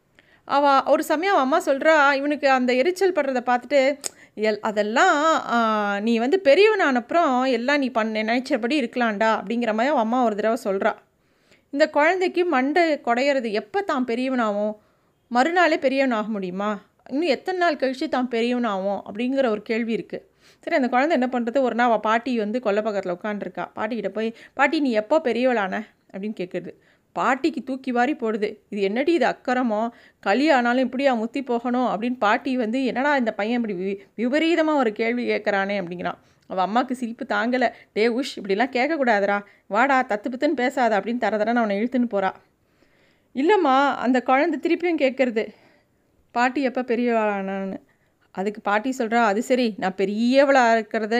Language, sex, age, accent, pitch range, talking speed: Tamil, female, 30-49, native, 215-275 Hz, 145 wpm